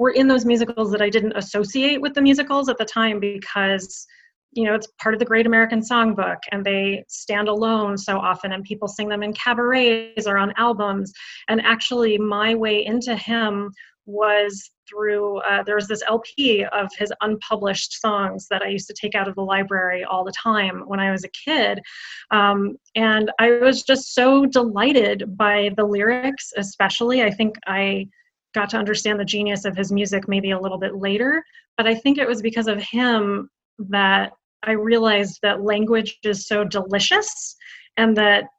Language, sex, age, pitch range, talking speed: English, female, 30-49, 200-230 Hz, 185 wpm